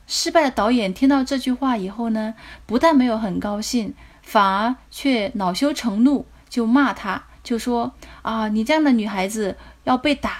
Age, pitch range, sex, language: 20-39, 215-270 Hz, female, Chinese